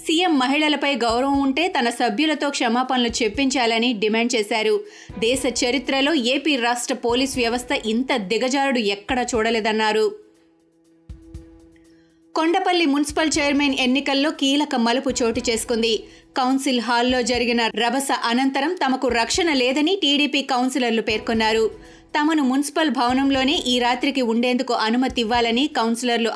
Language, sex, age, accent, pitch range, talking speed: Telugu, female, 20-39, native, 230-280 Hz, 105 wpm